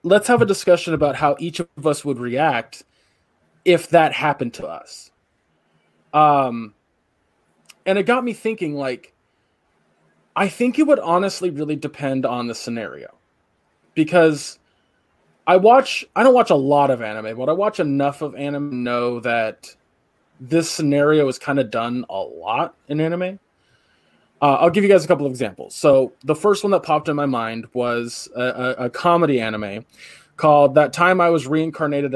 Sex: male